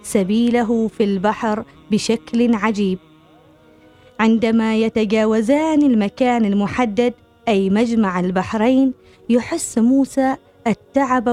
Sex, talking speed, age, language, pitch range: female, 80 wpm, 20-39, Arabic, 210-255 Hz